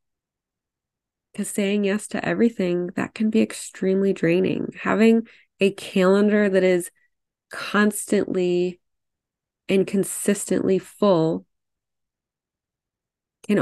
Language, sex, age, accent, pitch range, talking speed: English, female, 20-39, American, 175-205 Hz, 90 wpm